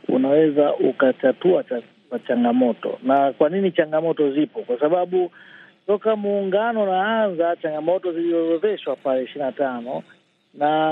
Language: Swahili